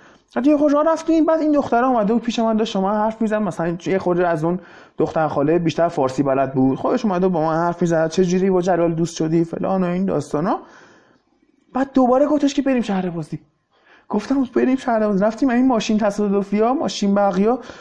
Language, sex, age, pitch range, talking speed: Persian, male, 20-39, 195-260 Hz, 205 wpm